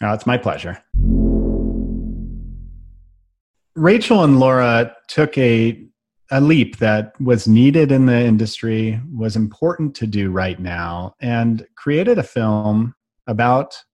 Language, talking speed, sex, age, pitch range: English, 115 wpm, male, 40-59, 105-135 Hz